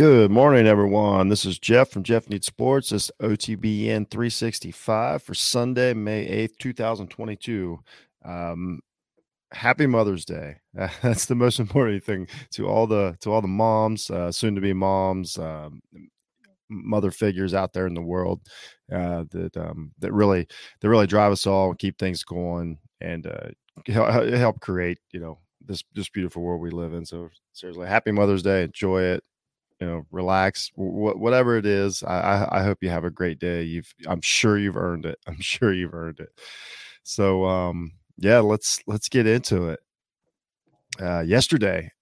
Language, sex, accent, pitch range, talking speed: English, male, American, 90-110 Hz, 175 wpm